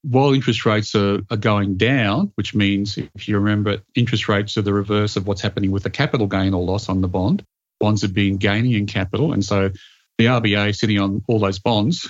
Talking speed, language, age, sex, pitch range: 220 wpm, English, 40-59, male, 100-115 Hz